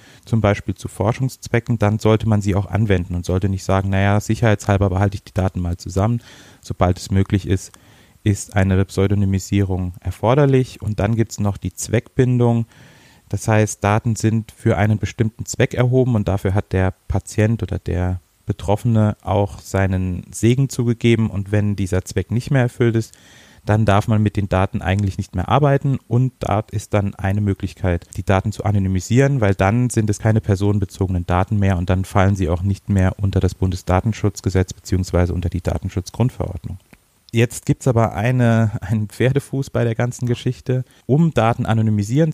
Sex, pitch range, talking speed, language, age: male, 95-115 Hz, 175 wpm, German, 30-49